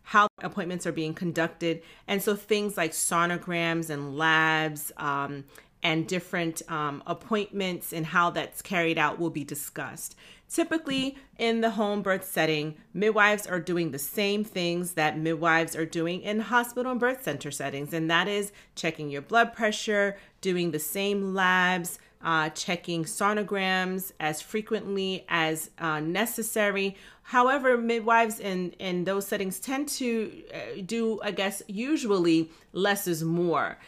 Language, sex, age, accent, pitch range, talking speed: English, female, 30-49, American, 160-210 Hz, 145 wpm